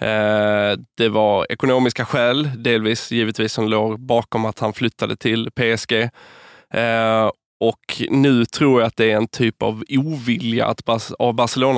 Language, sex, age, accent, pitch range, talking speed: Swedish, male, 20-39, native, 110-130 Hz, 140 wpm